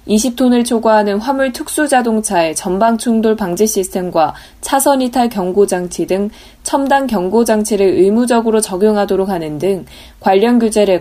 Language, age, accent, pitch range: Korean, 20-39, native, 185-245 Hz